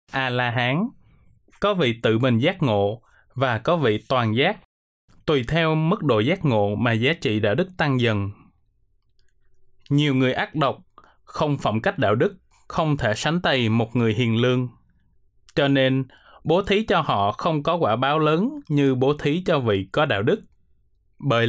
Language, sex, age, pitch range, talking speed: Vietnamese, male, 20-39, 115-155 Hz, 175 wpm